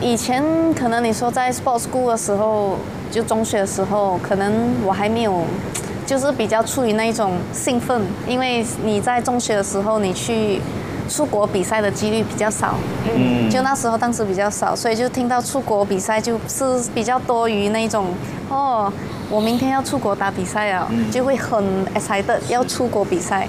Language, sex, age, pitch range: Chinese, female, 20-39, 200-245 Hz